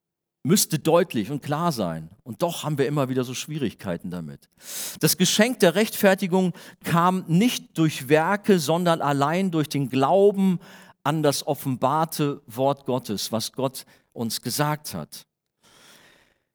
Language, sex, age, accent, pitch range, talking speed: German, male, 40-59, German, 125-160 Hz, 135 wpm